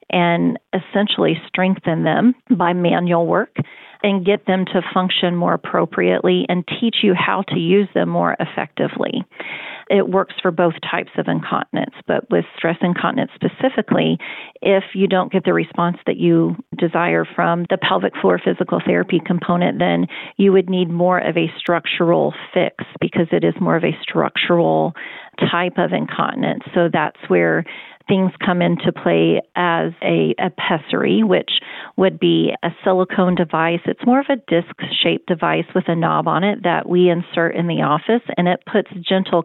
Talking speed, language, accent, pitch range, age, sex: 165 wpm, English, American, 170-190 Hz, 40-59, female